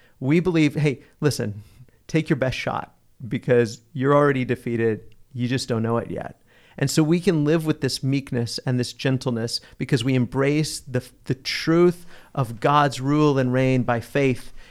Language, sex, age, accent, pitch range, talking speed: English, male, 40-59, American, 125-145 Hz, 170 wpm